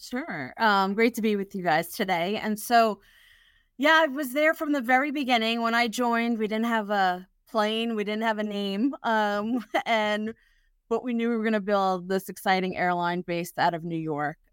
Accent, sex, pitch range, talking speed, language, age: American, female, 170-220 Hz, 205 wpm, English, 30-49